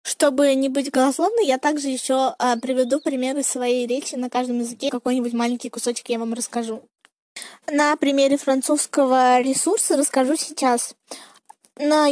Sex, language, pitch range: female, Russian, 250-300 Hz